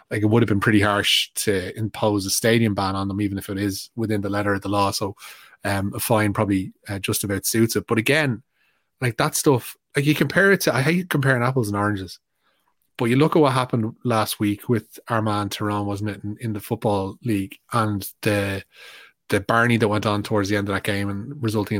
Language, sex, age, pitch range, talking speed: English, male, 20-39, 100-120 Hz, 230 wpm